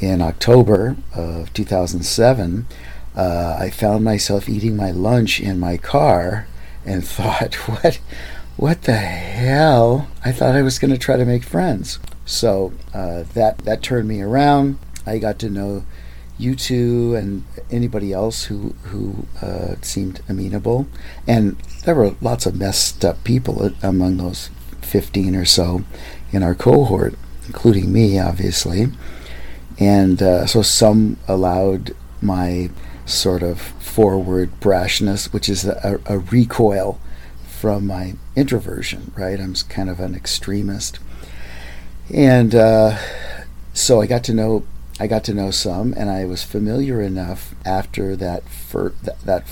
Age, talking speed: 50-69, 140 wpm